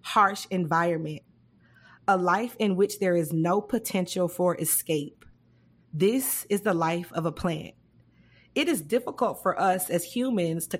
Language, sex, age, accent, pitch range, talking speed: English, female, 30-49, American, 165-215 Hz, 150 wpm